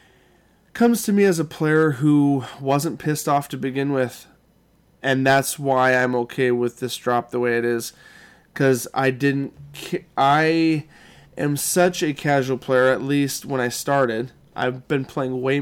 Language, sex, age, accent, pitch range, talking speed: English, male, 20-39, American, 125-140 Hz, 165 wpm